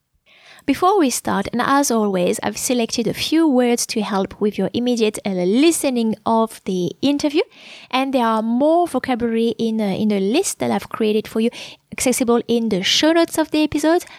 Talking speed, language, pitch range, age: 185 wpm, English, 210-275 Hz, 20-39